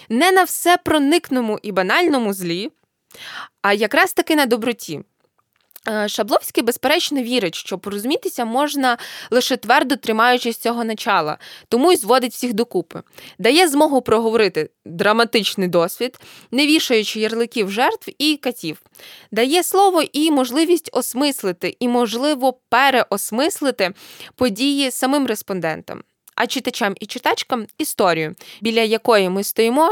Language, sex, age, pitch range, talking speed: Ukrainian, female, 20-39, 210-275 Hz, 120 wpm